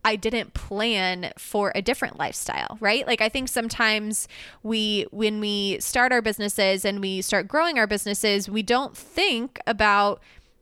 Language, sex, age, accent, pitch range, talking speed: English, female, 20-39, American, 195-225 Hz, 160 wpm